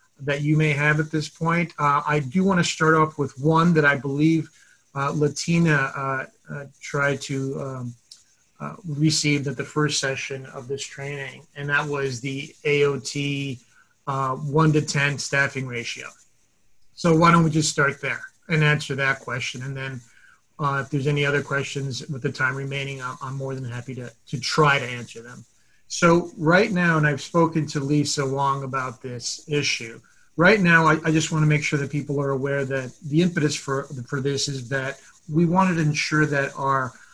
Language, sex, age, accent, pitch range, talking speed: English, male, 30-49, American, 135-150 Hz, 190 wpm